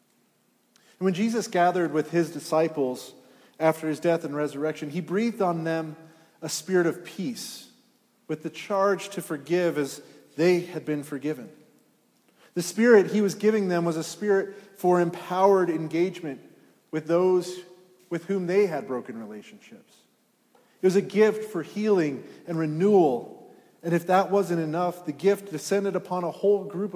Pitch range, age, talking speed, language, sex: 160-195 Hz, 30-49, 155 wpm, English, male